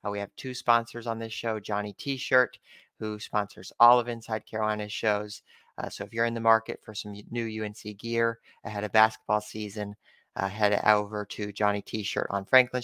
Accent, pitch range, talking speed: American, 105-120 Hz, 190 wpm